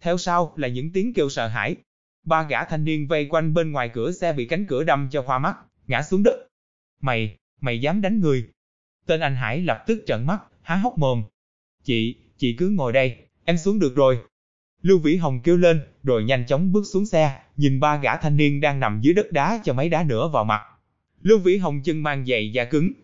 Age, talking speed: 20-39, 225 wpm